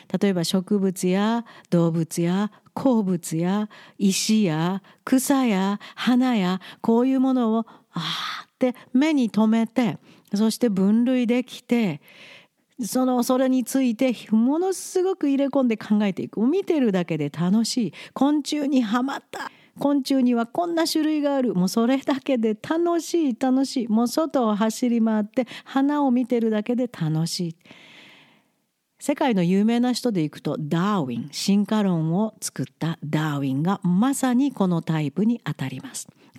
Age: 50-69